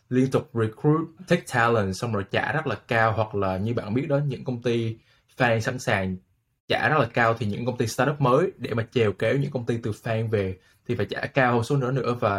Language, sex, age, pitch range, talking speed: Vietnamese, male, 20-39, 105-125 Hz, 250 wpm